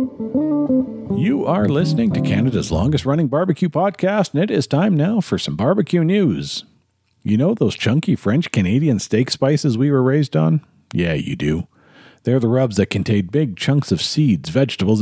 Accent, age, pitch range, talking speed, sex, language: American, 50-69, 105-155 Hz, 165 wpm, male, English